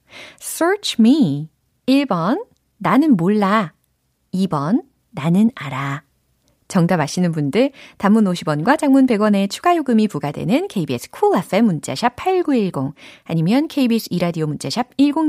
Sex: female